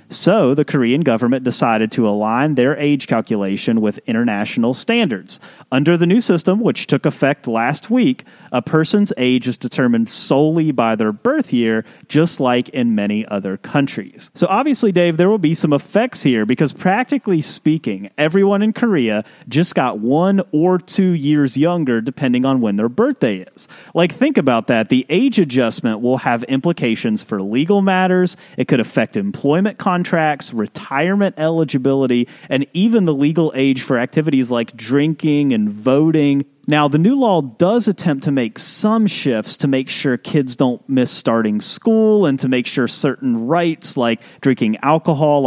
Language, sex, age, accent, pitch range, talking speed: English, male, 30-49, American, 125-190 Hz, 165 wpm